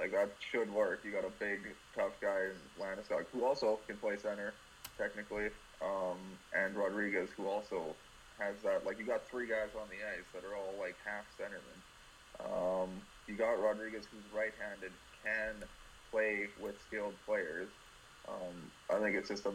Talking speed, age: 170 wpm, 20-39